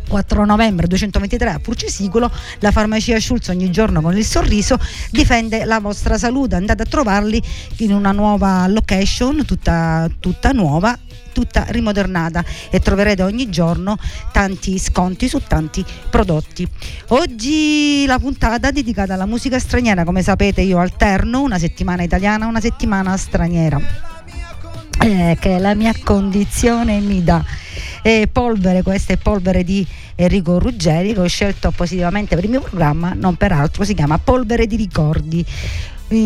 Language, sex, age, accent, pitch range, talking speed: Italian, female, 50-69, native, 180-225 Hz, 140 wpm